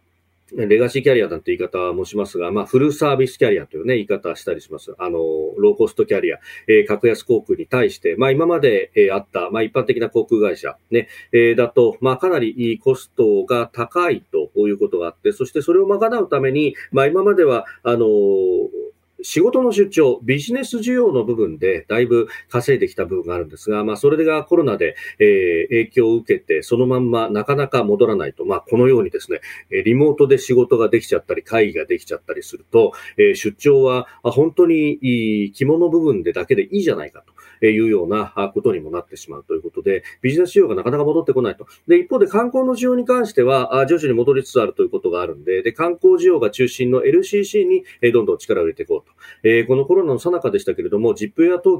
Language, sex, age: Japanese, male, 40-59